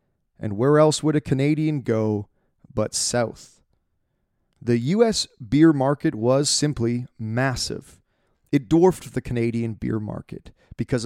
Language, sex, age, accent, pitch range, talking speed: English, male, 30-49, American, 115-165 Hz, 125 wpm